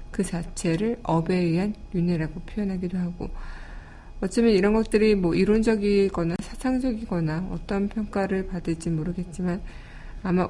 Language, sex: Korean, female